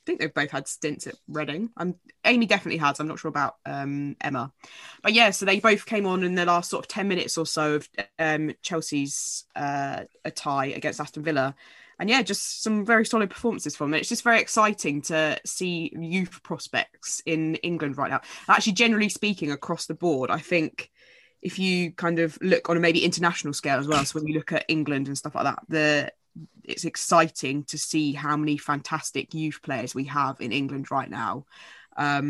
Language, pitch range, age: English, 145-175 Hz, 20-39